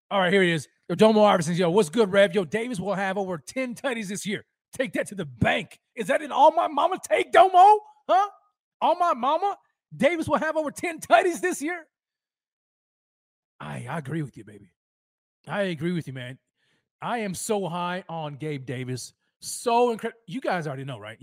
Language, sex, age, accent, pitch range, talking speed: English, male, 30-49, American, 150-210 Hz, 200 wpm